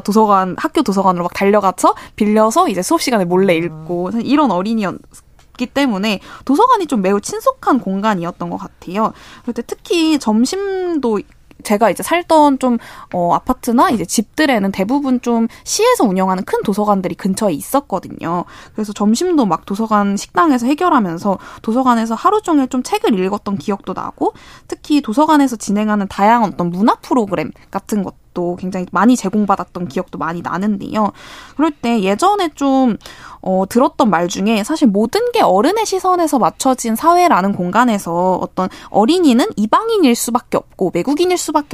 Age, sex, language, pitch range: 20-39, female, Korean, 195-285 Hz